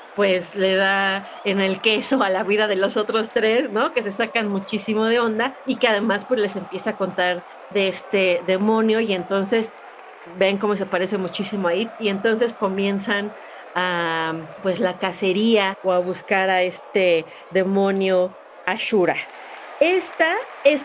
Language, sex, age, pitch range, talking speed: Spanish, female, 30-49, 190-240 Hz, 160 wpm